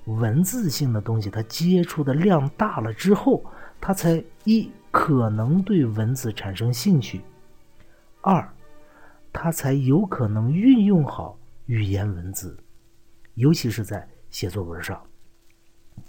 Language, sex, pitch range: Chinese, male, 110-170 Hz